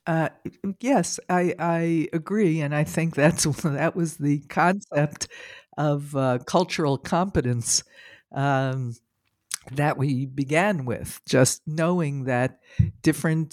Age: 60-79